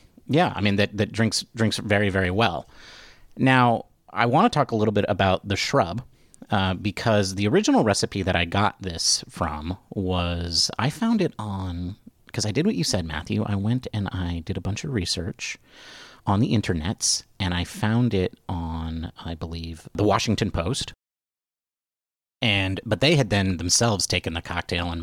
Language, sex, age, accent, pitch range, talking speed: English, male, 30-49, American, 90-115 Hz, 180 wpm